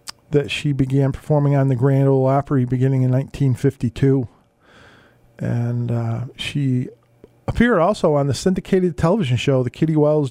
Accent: American